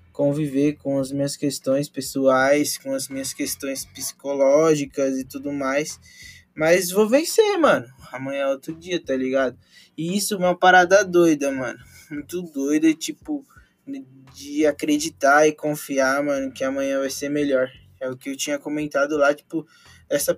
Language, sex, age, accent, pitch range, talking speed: Portuguese, male, 20-39, Brazilian, 140-180 Hz, 155 wpm